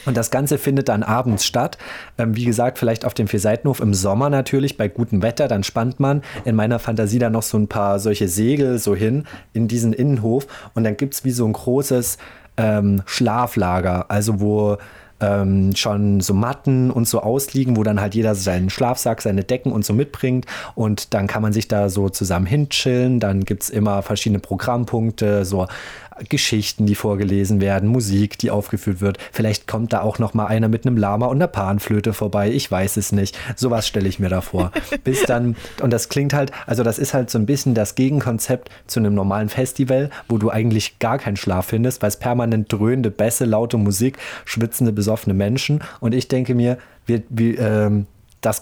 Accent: German